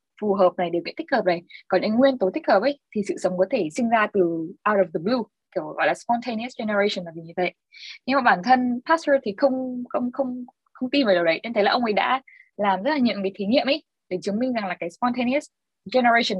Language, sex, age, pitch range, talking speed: Vietnamese, female, 20-39, 185-255 Hz, 260 wpm